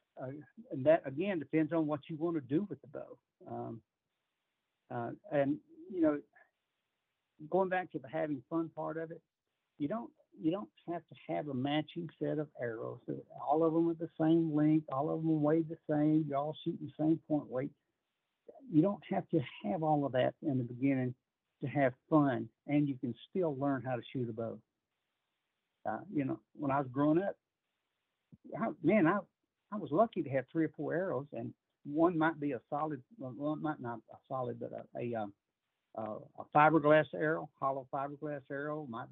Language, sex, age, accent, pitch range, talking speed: English, male, 60-79, American, 130-165 Hz, 195 wpm